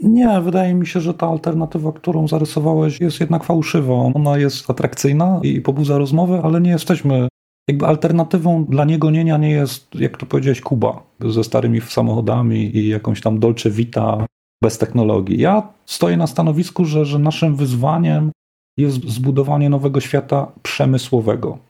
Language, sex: Polish, male